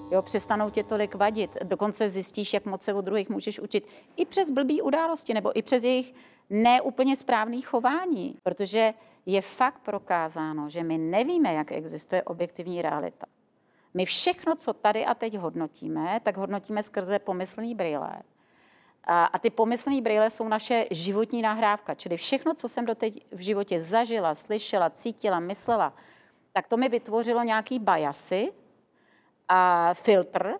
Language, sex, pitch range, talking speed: Czech, female, 185-235 Hz, 145 wpm